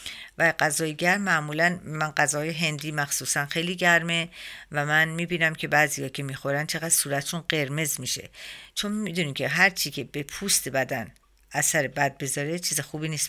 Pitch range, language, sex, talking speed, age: 145-180 Hz, Persian, female, 160 wpm, 50-69